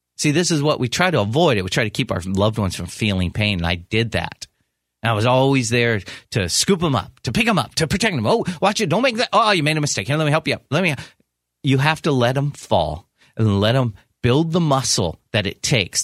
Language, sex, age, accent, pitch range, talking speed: English, male, 40-59, American, 100-150 Hz, 275 wpm